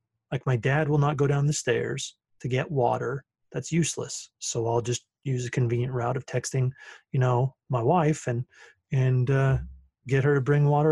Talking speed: 190 wpm